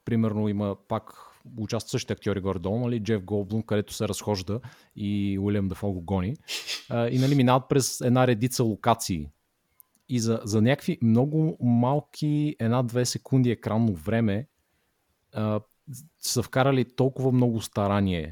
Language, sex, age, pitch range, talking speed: Bulgarian, male, 30-49, 100-120 Hz, 130 wpm